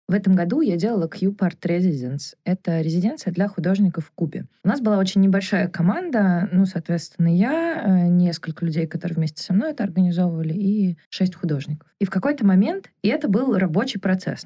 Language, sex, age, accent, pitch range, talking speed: Russian, female, 20-39, native, 170-200 Hz, 175 wpm